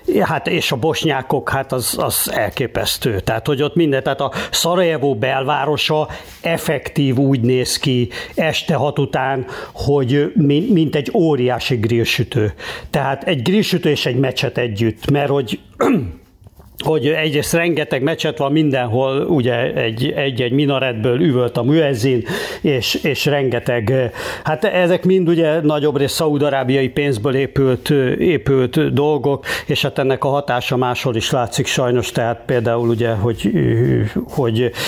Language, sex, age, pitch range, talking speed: Hungarian, male, 60-79, 120-150 Hz, 140 wpm